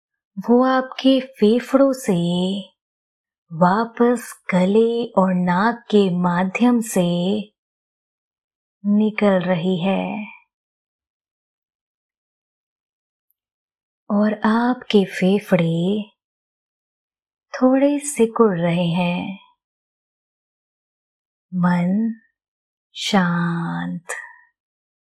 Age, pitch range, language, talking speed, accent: 20-39, 185-235 Hz, Hindi, 55 wpm, native